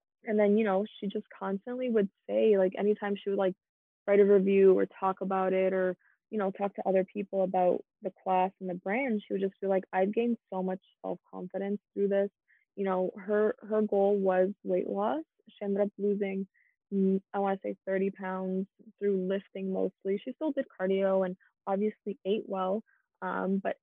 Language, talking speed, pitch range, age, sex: English, 195 wpm, 185-210 Hz, 20-39, female